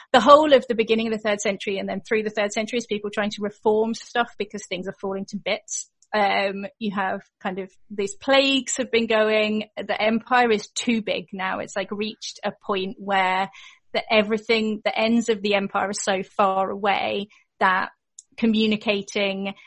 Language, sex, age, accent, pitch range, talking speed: English, female, 30-49, British, 200-225 Hz, 190 wpm